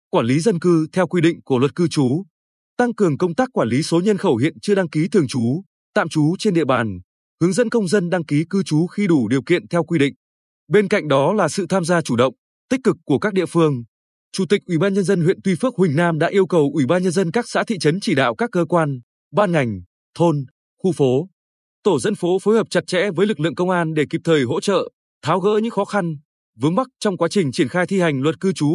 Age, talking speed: 20-39, 265 wpm